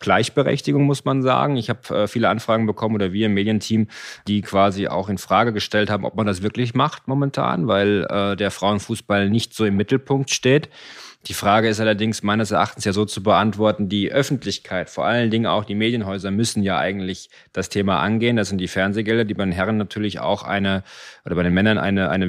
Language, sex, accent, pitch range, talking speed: German, male, German, 100-120 Hz, 200 wpm